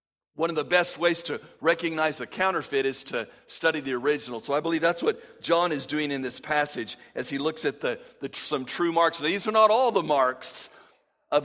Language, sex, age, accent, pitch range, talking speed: English, male, 50-69, American, 140-185 Hz, 205 wpm